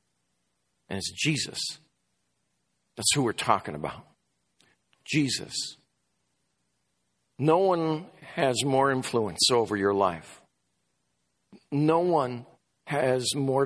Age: 50-69